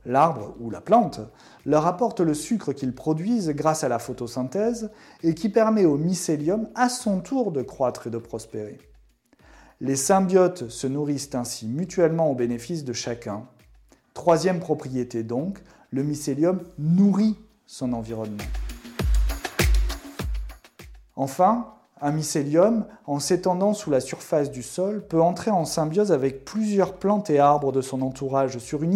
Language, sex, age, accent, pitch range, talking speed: French, male, 30-49, French, 130-185 Hz, 145 wpm